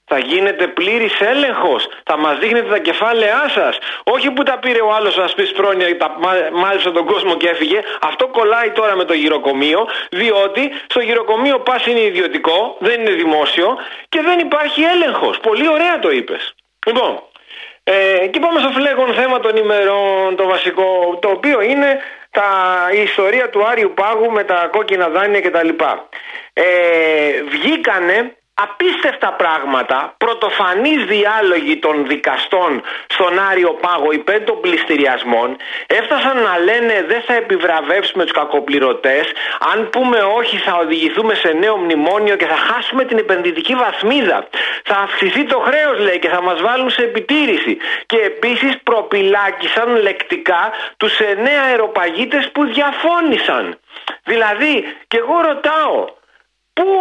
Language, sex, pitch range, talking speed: Greek, male, 190-305 Hz, 135 wpm